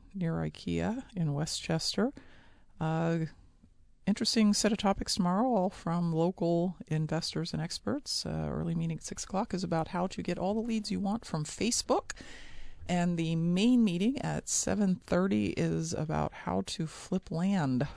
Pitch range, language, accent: 160-200 Hz, English, American